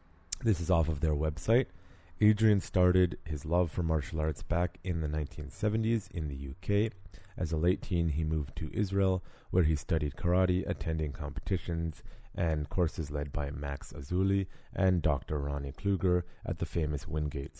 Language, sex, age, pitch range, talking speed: English, male, 30-49, 75-95 Hz, 165 wpm